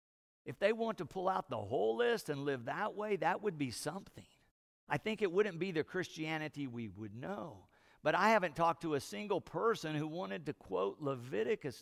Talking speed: 205 wpm